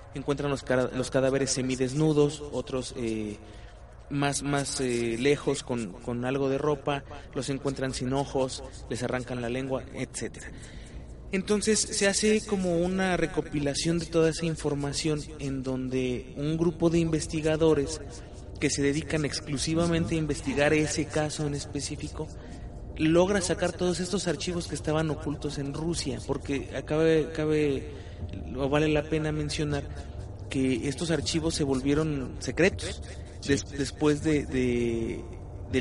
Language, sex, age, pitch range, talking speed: Spanish, male, 30-49, 125-155 Hz, 130 wpm